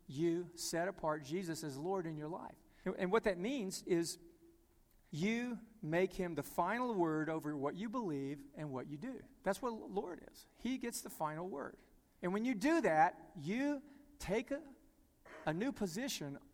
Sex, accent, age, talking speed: male, American, 50-69, 180 wpm